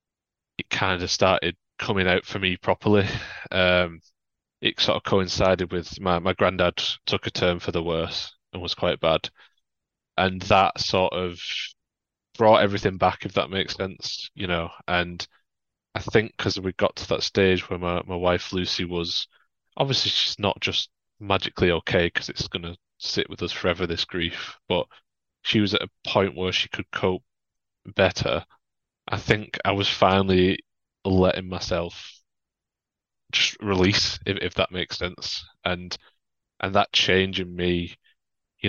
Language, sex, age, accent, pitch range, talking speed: English, male, 20-39, British, 90-100 Hz, 160 wpm